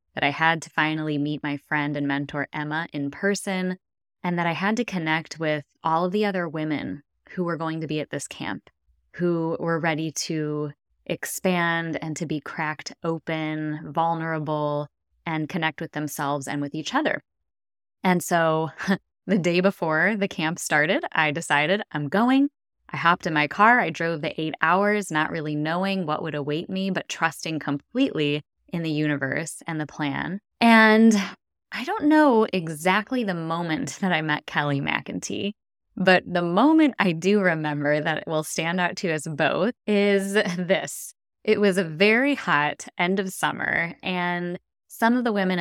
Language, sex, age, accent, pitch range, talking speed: English, female, 10-29, American, 155-190 Hz, 170 wpm